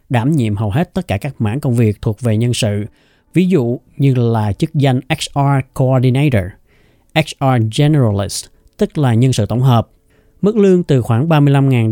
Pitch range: 115-150 Hz